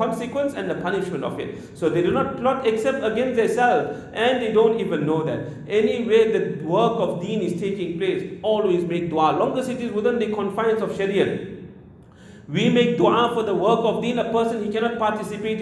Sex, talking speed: male, 205 wpm